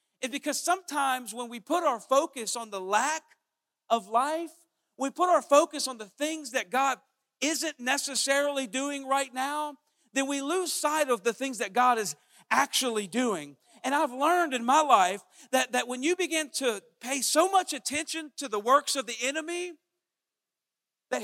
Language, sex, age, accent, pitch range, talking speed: English, male, 50-69, American, 240-310 Hz, 175 wpm